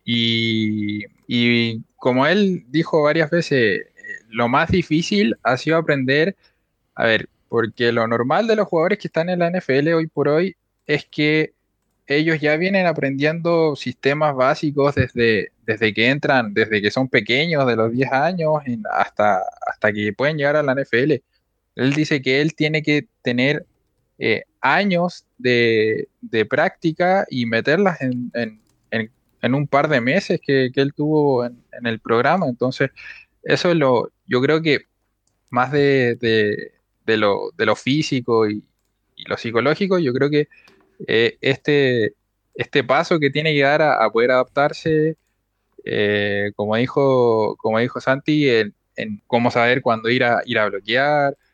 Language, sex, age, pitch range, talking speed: Spanish, male, 20-39, 115-150 Hz, 160 wpm